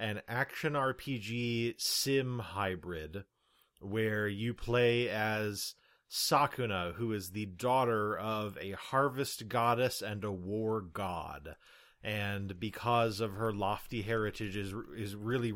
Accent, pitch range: American, 100-120 Hz